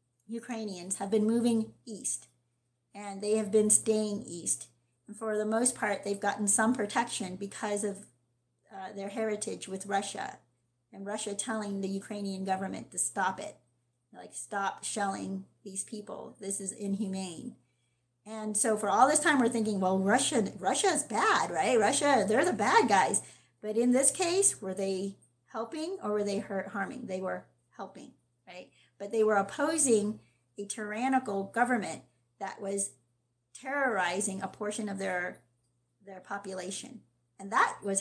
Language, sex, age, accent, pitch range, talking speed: English, female, 40-59, American, 165-230 Hz, 155 wpm